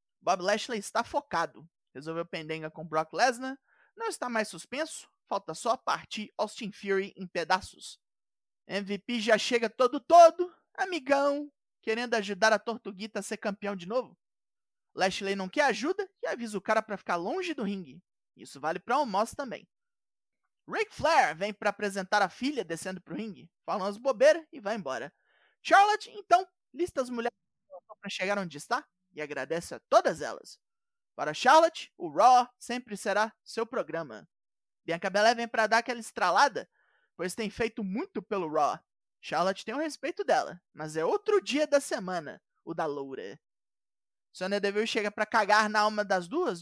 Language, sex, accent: Portuguese, male, Brazilian